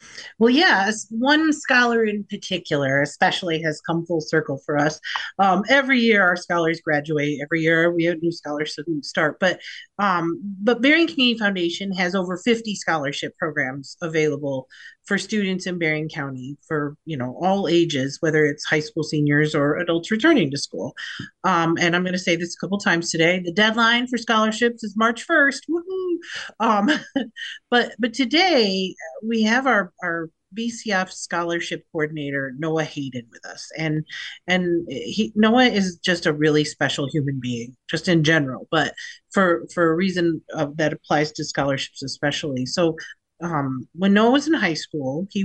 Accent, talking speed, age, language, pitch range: American, 170 wpm, 40-59, English, 155-200 Hz